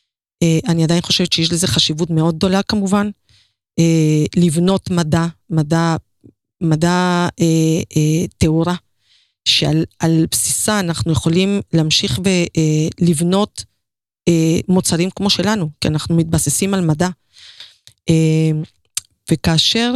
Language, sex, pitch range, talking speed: Hebrew, female, 160-195 Hz, 110 wpm